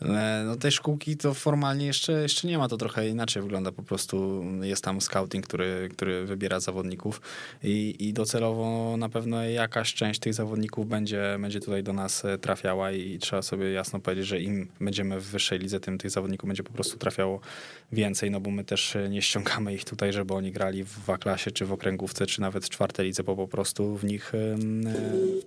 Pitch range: 95-110 Hz